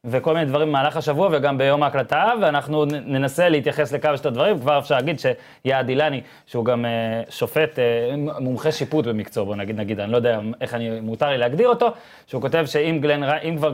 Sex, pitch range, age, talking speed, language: male, 125-155 Hz, 20-39, 190 wpm, Hebrew